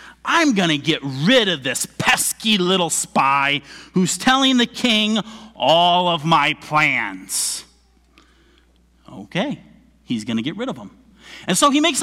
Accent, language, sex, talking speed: American, English, male, 140 wpm